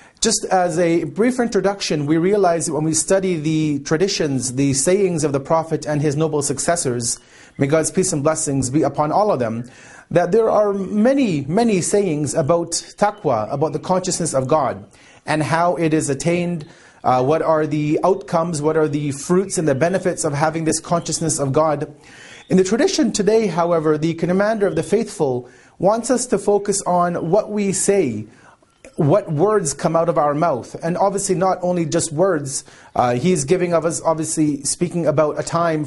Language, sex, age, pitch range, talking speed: English, male, 30-49, 150-185 Hz, 180 wpm